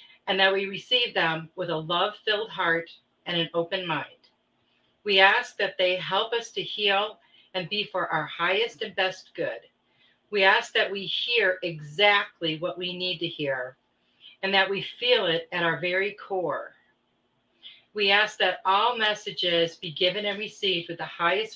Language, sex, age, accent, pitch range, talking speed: English, female, 40-59, American, 165-205 Hz, 170 wpm